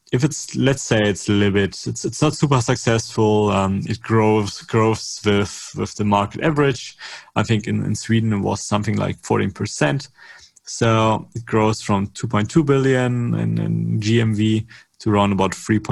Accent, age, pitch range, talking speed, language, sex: German, 30-49, 95-115 Hz, 170 wpm, Danish, male